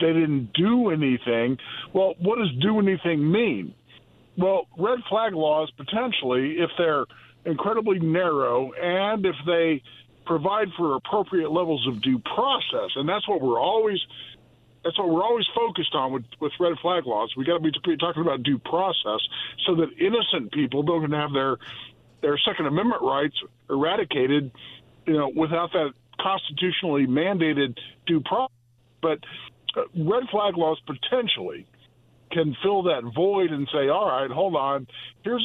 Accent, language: American, English